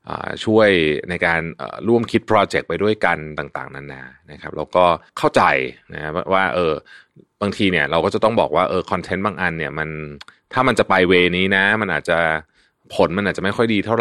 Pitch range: 75-95 Hz